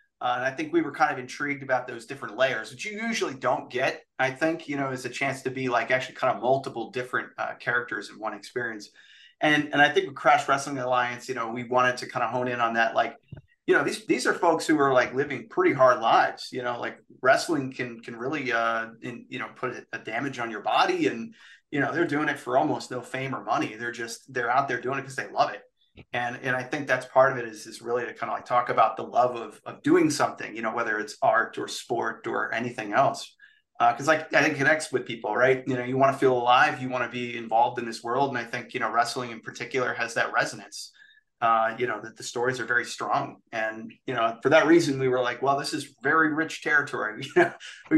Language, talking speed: English, 255 wpm